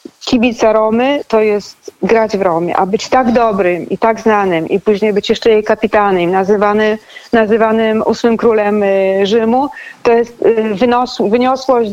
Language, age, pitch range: Polish, 40-59, 205-245 Hz